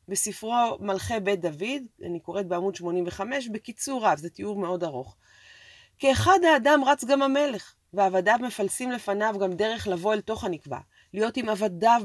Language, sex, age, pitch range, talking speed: Hebrew, female, 30-49, 180-235 Hz, 155 wpm